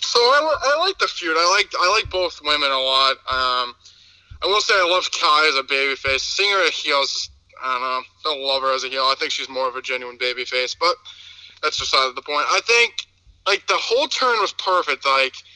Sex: male